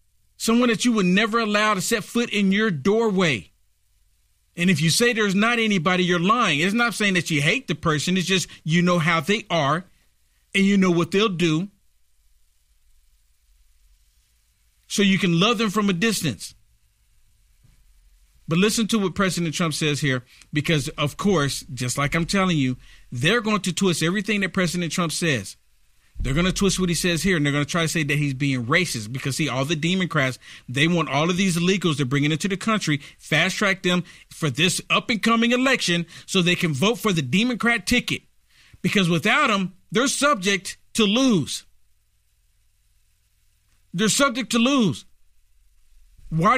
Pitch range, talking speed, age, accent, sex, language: 140-205 Hz, 180 wpm, 50-69, American, male, English